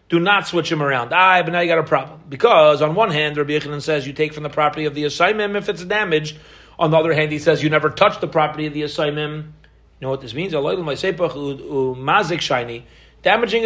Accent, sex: American, male